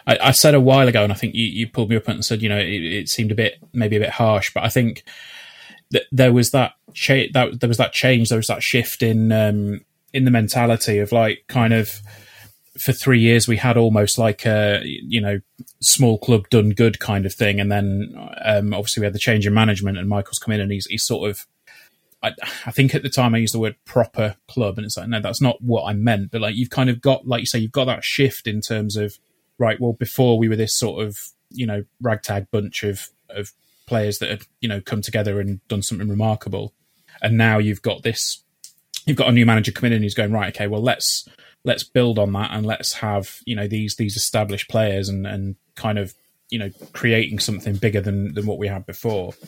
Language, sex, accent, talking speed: English, male, British, 240 wpm